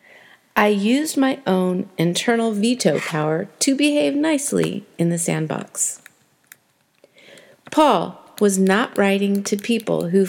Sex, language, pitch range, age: female, English, 190-250 Hz, 40-59